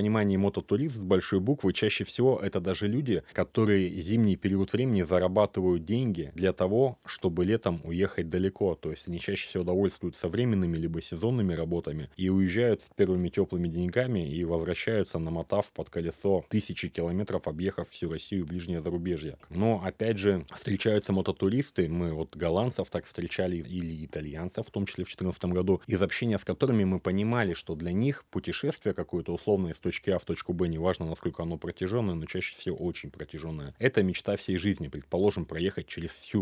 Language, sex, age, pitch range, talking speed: Russian, male, 30-49, 85-105 Hz, 170 wpm